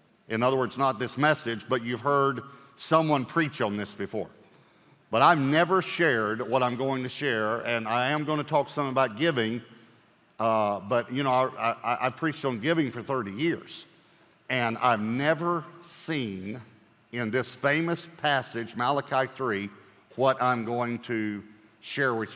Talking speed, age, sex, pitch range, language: 155 wpm, 50-69, male, 120-155 Hz, English